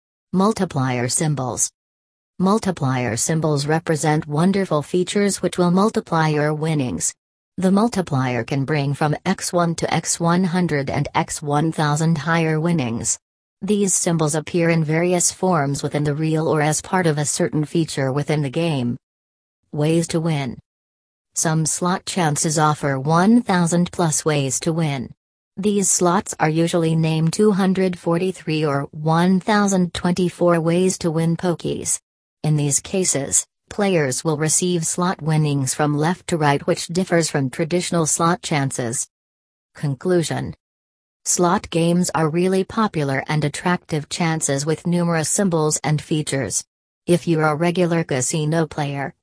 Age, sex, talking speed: 40-59, female, 130 wpm